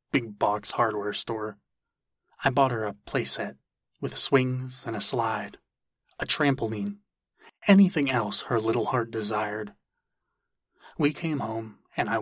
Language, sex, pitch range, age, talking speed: English, male, 105-130 Hz, 30-49, 135 wpm